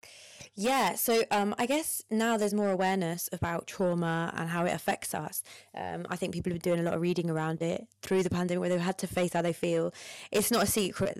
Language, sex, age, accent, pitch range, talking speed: English, female, 20-39, British, 165-200 Hz, 235 wpm